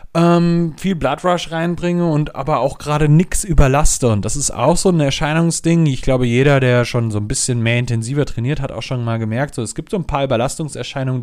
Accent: German